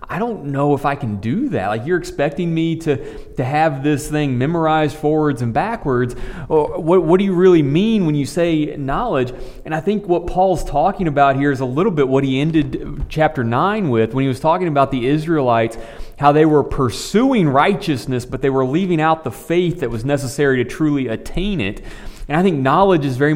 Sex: male